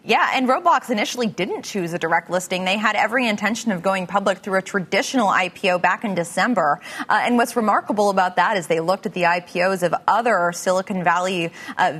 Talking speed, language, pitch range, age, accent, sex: 200 wpm, English, 185-235 Hz, 20-39, American, female